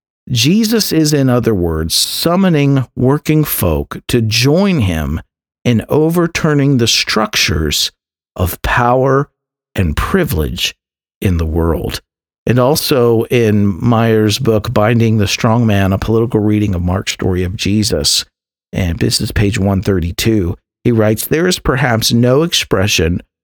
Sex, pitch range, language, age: male, 100-135 Hz, English, 50-69